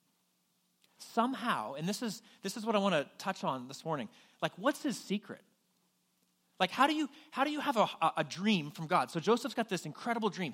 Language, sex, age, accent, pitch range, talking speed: English, male, 30-49, American, 155-215 Hz, 215 wpm